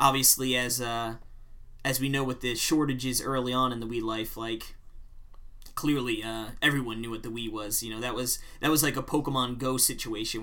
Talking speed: 200 wpm